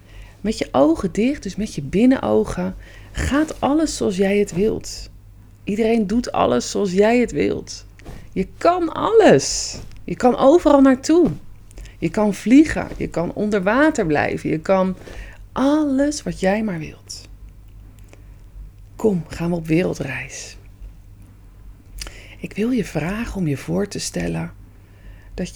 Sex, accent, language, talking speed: female, Dutch, English, 135 wpm